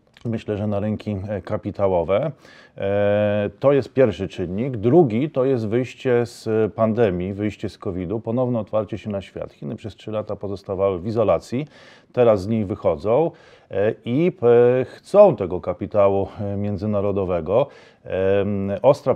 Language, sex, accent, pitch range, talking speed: Polish, male, native, 100-115 Hz, 125 wpm